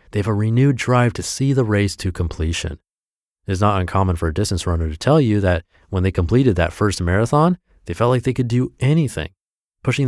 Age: 30-49